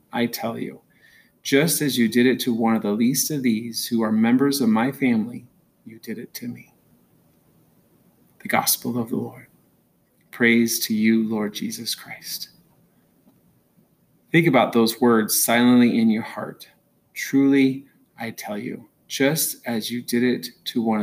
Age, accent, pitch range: 30-49, American, 110-140 Hz